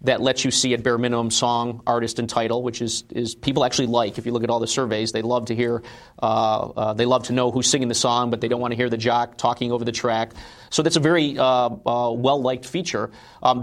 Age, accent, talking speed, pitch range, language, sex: 40-59, American, 265 wpm, 115-130 Hz, English, male